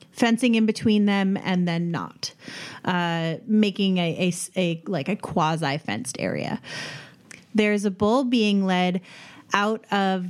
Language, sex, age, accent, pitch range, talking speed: English, female, 30-49, American, 170-205 Hz, 140 wpm